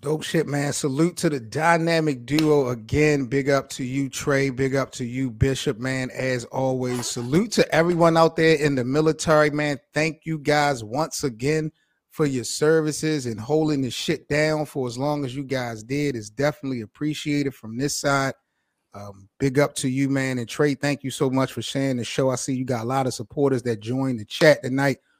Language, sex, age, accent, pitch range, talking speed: English, male, 30-49, American, 130-150 Hz, 205 wpm